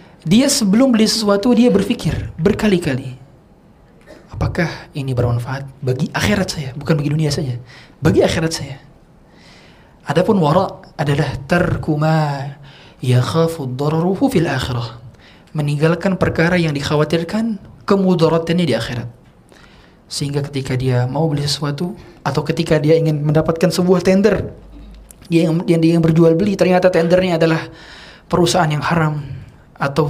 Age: 30-49